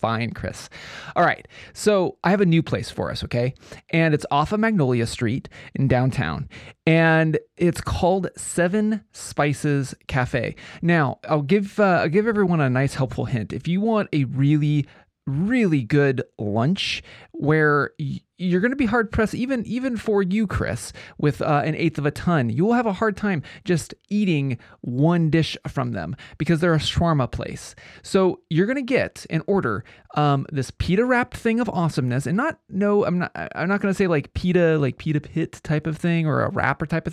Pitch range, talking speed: 140-190 Hz, 190 wpm